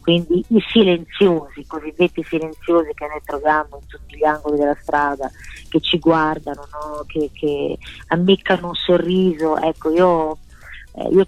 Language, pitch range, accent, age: Italian, 150-180 Hz, native, 30-49